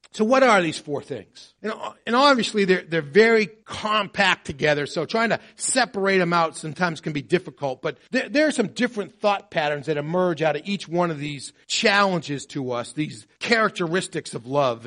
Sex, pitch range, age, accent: male, 155-205 Hz, 40-59, American